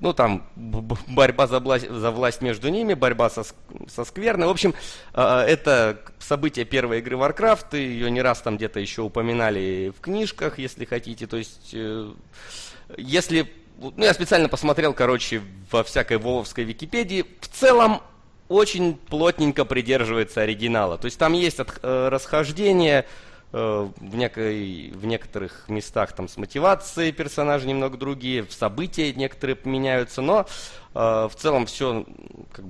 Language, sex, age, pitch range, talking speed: Russian, male, 30-49, 110-145 Hz, 130 wpm